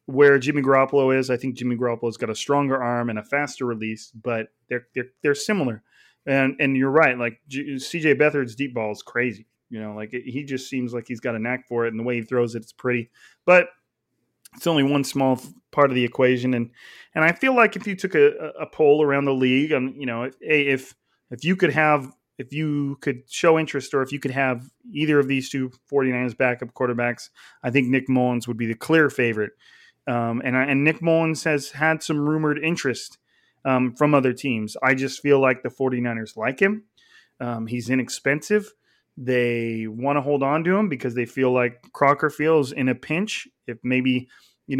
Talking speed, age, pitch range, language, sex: 215 wpm, 30-49, 125-145 Hz, English, male